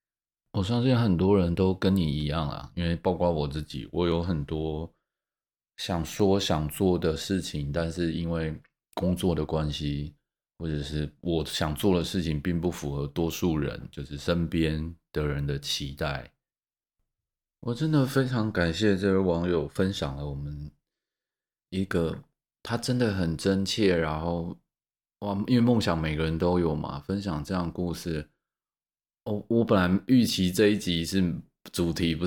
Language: Chinese